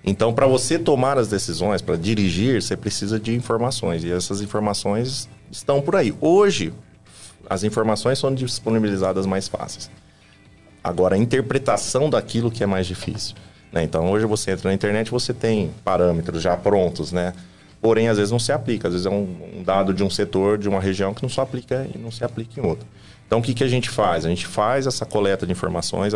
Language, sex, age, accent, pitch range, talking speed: Portuguese, male, 30-49, Brazilian, 95-115 Hz, 200 wpm